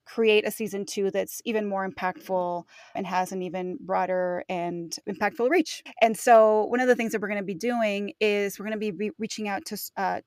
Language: English